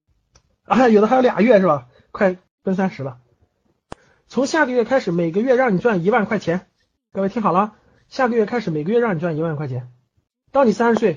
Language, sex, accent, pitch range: Chinese, male, native, 165-250 Hz